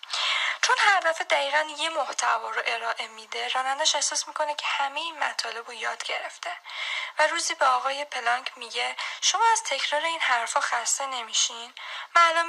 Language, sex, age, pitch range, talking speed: Persian, female, 10-29, 235-310 Hz, 150 wpm